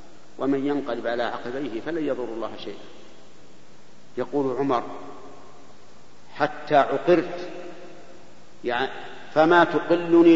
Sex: male